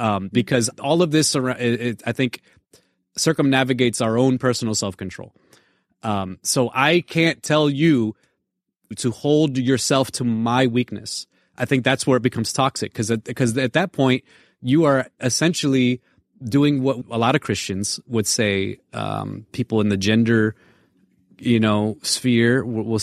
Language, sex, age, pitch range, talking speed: English, male, 30-49, 115-145 Hz, 145 wpm